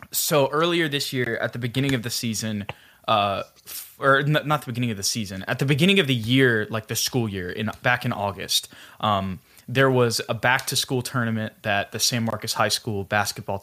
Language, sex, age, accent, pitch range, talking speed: English, male, 20-39, American, 110-135 Hz, 205 wpm